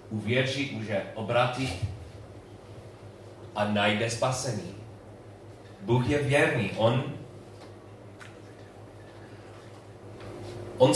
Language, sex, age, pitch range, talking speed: Czech, male, 30-49, 105-130 Hz, 65 wpm